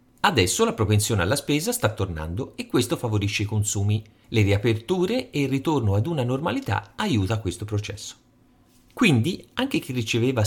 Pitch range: 105-150 Hz